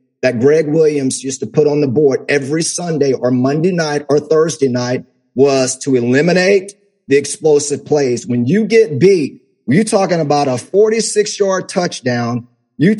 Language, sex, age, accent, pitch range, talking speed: English, male, 50-69, American, 150-205 Hz, 155 wpm